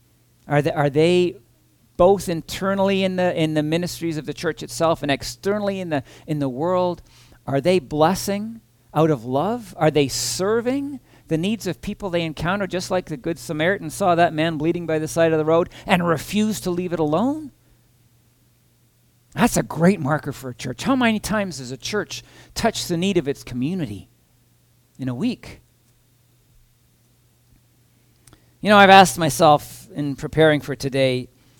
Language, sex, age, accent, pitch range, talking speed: English, male, 50-69, American, 125-185 Hz, 170 wpm